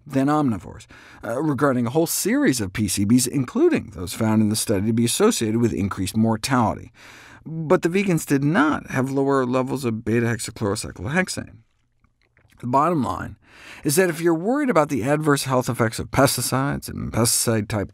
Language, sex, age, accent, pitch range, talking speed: English, male, 50-69, American, 115-155 Hz, 155 wpm